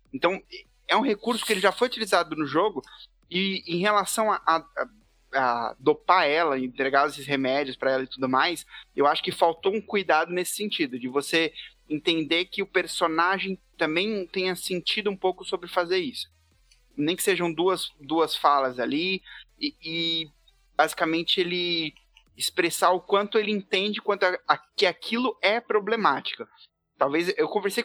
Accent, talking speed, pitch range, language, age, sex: Brazilian, 165 wpm, 155-195 Hz, Portuguese, 20-39, male